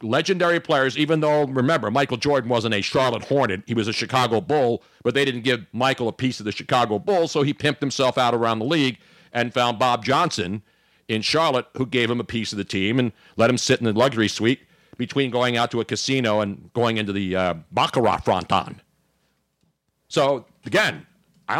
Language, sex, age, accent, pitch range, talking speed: English, male, 50-69, American, 110-160 Hz, 205 wpm